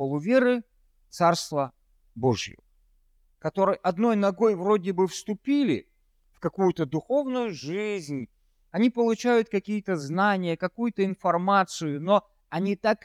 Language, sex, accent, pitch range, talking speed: Russian, male, native, 140-210 Hz, 100 wpm